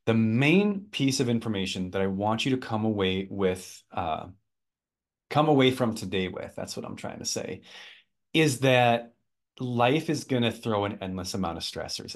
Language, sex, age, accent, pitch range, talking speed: English, male, 30-49, American, 100-140 Hz, 185 wpm